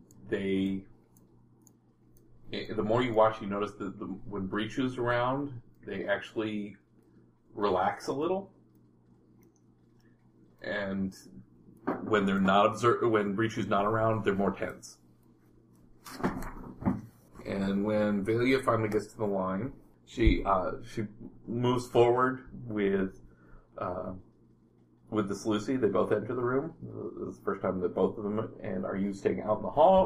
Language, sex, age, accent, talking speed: English, male, 30-49, American, 140 wpm